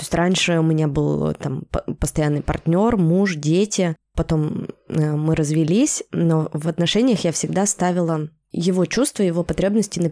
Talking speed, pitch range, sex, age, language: 140 wpm, 150-180 Hz, female, 20-39, Russian